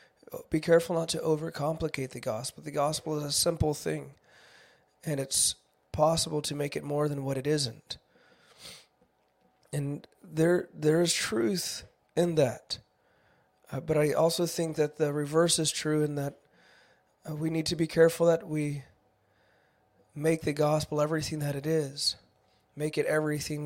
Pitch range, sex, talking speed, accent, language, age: 140-160 Hz, male, 155 wpm, American, English, 20-39